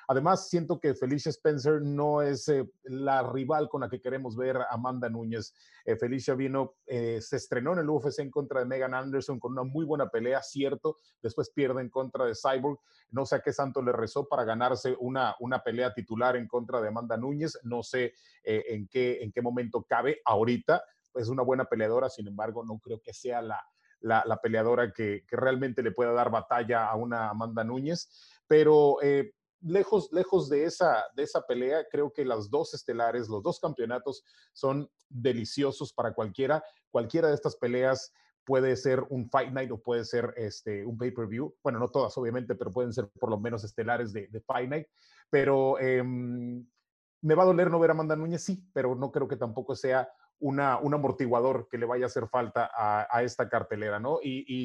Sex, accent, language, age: male, Mexican, Spanish, 30-49